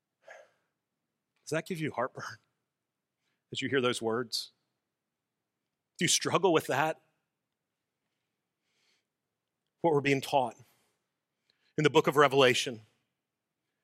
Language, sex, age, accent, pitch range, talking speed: English, male, 40-59, American, 125-170 Hz, 105 wpm